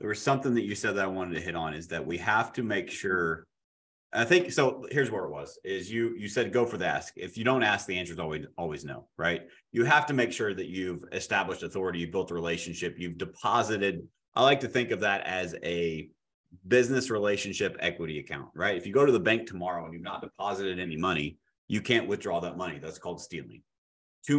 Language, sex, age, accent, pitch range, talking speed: English, male, 30-49, American, 85-120 Hz, 230 wpm